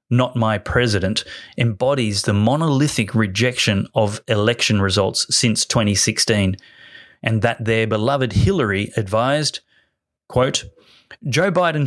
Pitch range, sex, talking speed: 105-130 Hz, male, 105 wpm